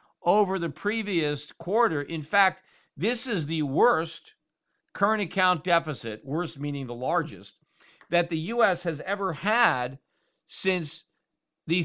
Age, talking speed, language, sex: 50-69, 125 wpm, English, male